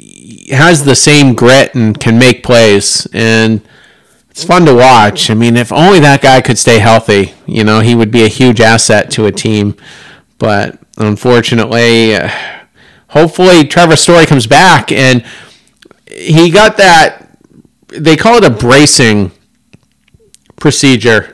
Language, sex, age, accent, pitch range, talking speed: English, male, 40-59, American, 115-135 Hz, 145 wpm